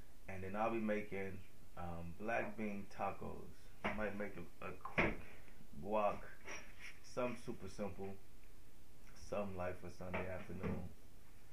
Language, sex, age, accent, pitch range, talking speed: English, male, 20-39, American, 90-100 Hz, 125 wpm